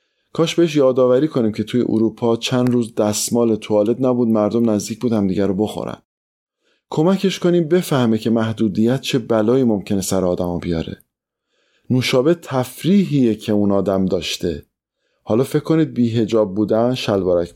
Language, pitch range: Persian, 105-135 Hz